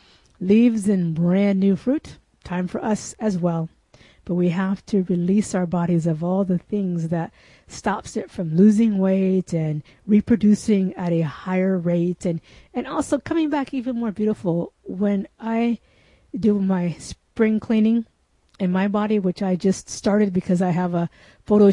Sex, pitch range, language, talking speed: female, 180-230 Hz, English, 165 wpm